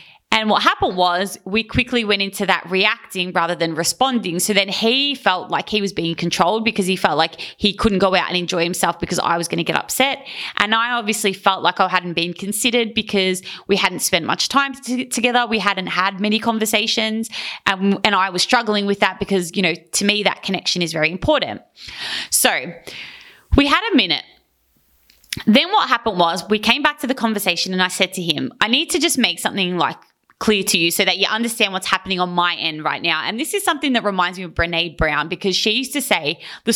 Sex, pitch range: female, 180-230 Hz